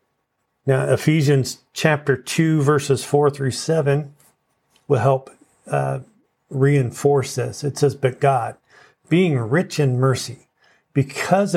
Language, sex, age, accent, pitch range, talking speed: English, male, 50-69, American, 125-155 Hz, 115 wpm